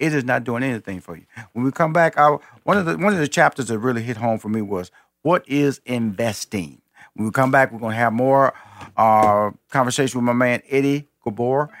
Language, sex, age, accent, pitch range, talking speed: English, male, 50-69, American, 110-145 Hz, 230 wpm